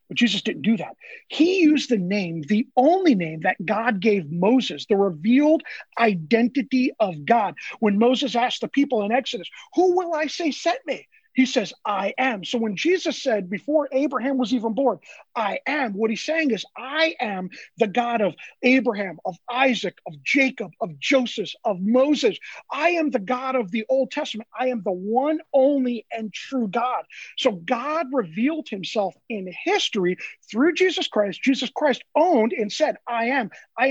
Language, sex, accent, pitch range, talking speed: English, male, American, 205-280 Hz, 175 wpm